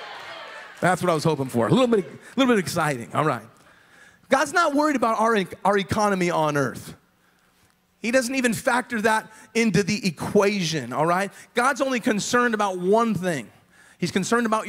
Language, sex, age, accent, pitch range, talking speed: English, male, 30-49, American, 180-235 Hz, 175 wpm